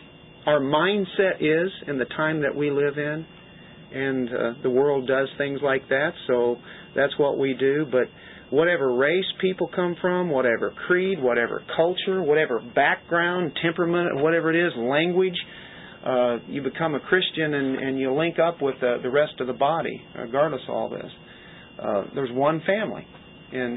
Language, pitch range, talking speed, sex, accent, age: English, 135-175 Hz, 165 wpm, male, American, 50-69